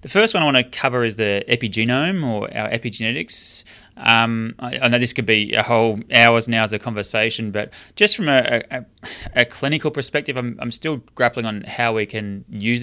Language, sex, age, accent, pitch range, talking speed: English, male, 20-39, Australian, 100-120 Hz, 205 wpm